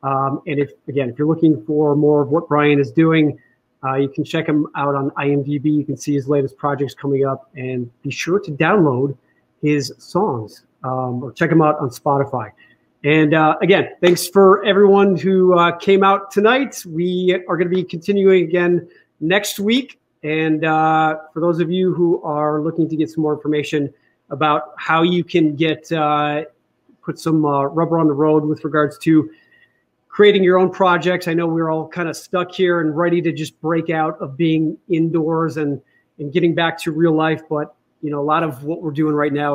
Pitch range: 145-175 Hz